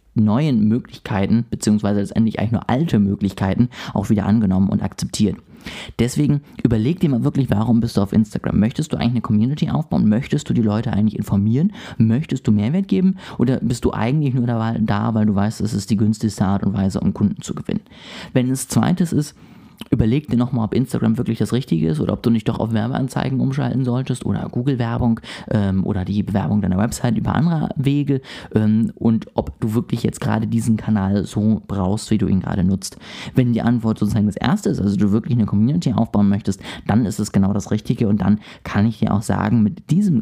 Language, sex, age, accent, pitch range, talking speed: German, male, 30-49, German, 105-125 Hz, 205 wpm